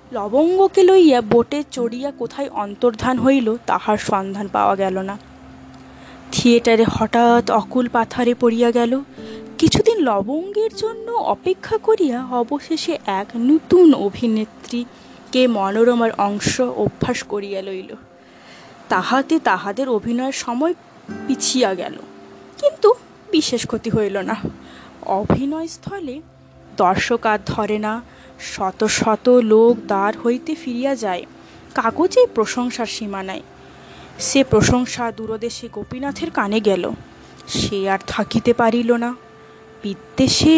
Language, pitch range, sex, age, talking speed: Bengali, 220-285 Hz, female, 20-39, 105 wpm